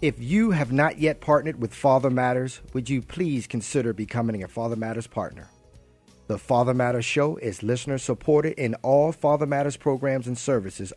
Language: English